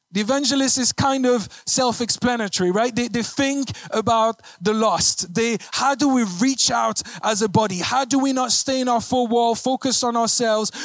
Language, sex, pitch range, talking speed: English, male, 220-270 Hz, 190 wpm